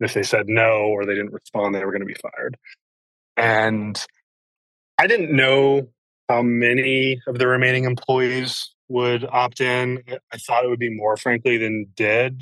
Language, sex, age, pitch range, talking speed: English, male, 20-39, 105-120 Hz, 175 wpm